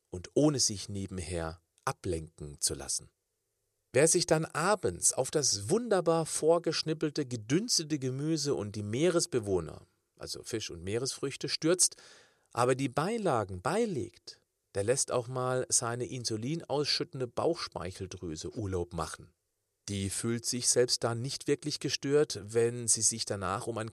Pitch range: 110-160 Hz